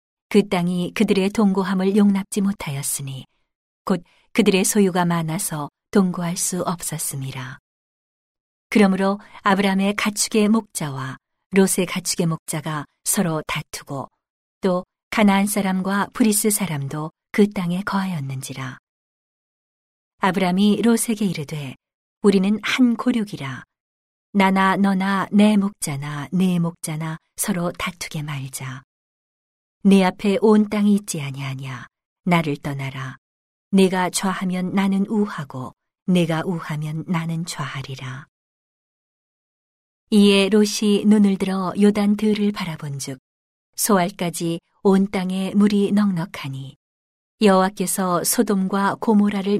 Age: 40-59